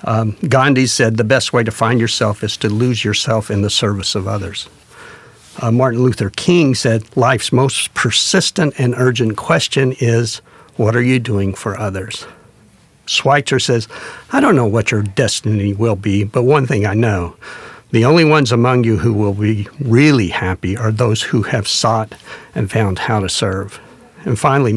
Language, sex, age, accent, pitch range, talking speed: English, male, 60-79, American, 105-130 Hz, 175 wpm